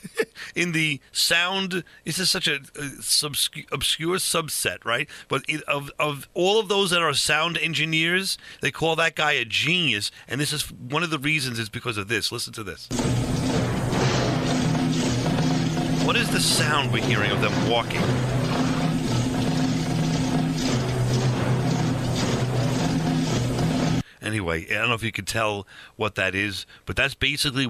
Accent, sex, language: American, male, English